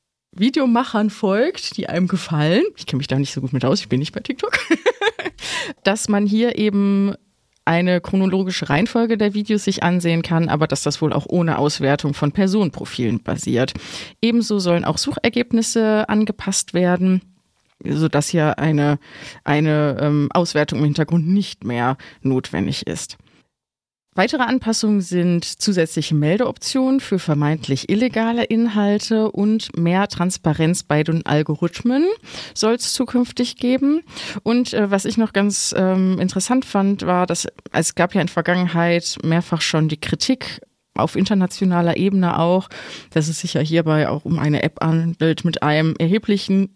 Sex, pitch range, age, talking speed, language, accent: female, 155-210 Hz, 30-49, 150 wpm, German, German